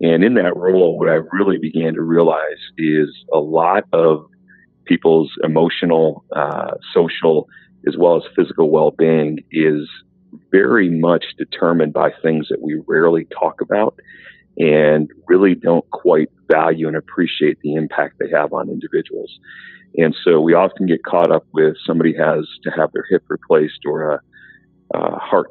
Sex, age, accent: male, 40-59, American